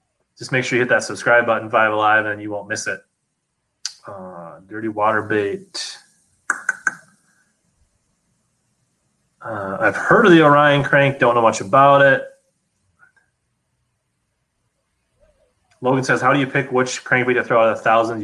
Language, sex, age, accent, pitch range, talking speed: English, male, 30-49, American, 110-130 Hz, 150 wpm